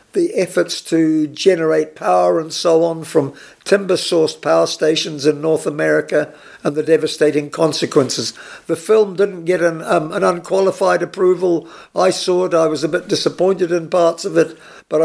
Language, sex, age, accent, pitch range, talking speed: English, male, 60-79, British, 150-180 Hz, 165 wpm